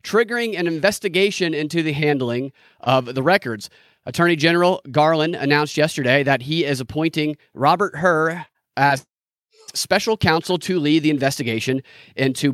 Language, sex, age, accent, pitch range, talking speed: English, male, 30-49, American, 140-185 Hz, 135 wpm